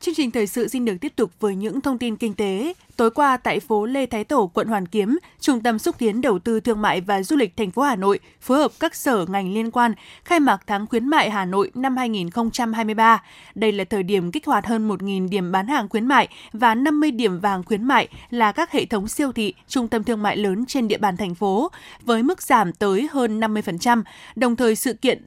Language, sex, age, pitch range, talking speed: Vietnamese, female, 20-39, 210-270 Hz, 235 wpm